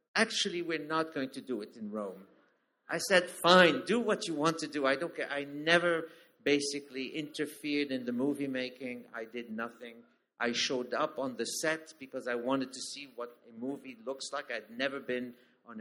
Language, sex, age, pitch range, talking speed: English, male, 50-69, 130-160 Hz, 195 wpm